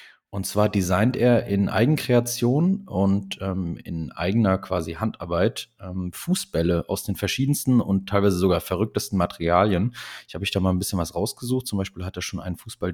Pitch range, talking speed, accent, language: 90-110 Hz, 175 wpm, German, German